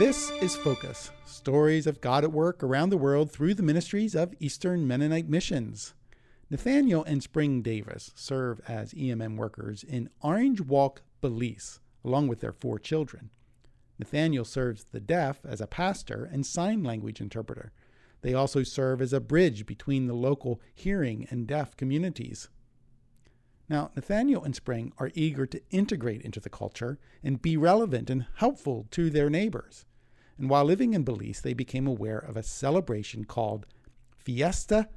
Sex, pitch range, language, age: male, 120-160 Hz, English, 50-69